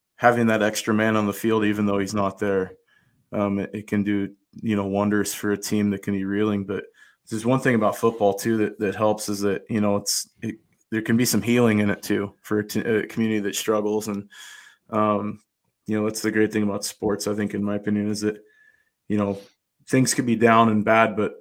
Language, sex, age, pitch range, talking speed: English, male, 20-39, 100-110 Hz, 235 wpm